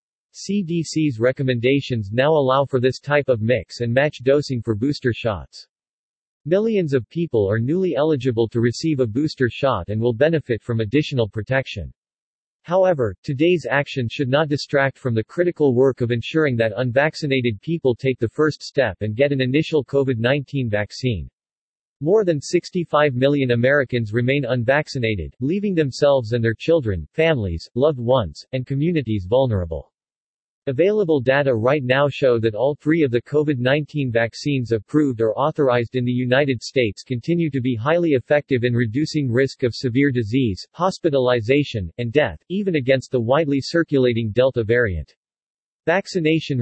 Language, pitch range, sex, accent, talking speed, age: English, 120-150 Hz, male, American, 150 wpm, 40-59